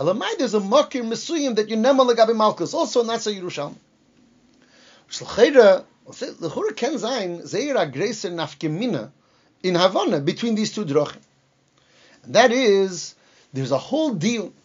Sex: male